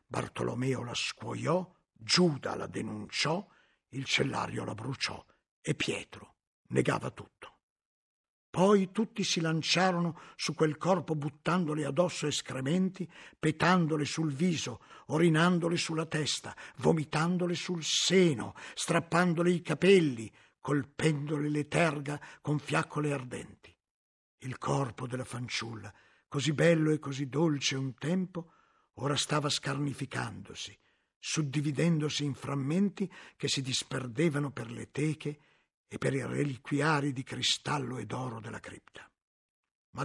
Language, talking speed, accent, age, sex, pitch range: Italian, 115 wpm, native, 50-69, male, 145-195 Hz